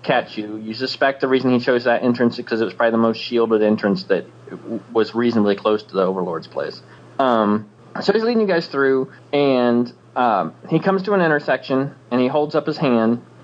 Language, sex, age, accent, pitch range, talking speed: English, male, 30-49, American, 120-150 Hz, 210 wpm